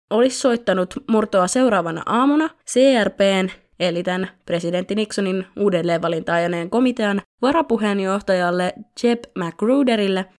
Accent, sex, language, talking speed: native, female, Finnish, 85 wpm